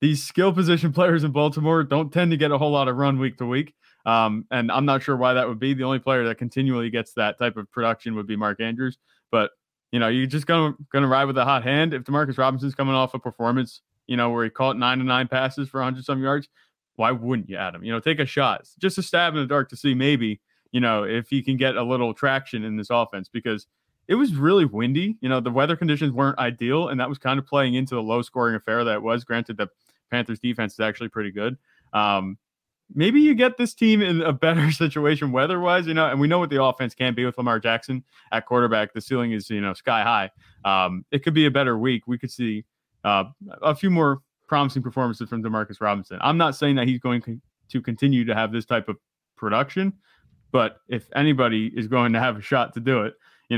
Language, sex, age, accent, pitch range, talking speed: English, male, 20-39, American, 115-140 Hz, 245 wpm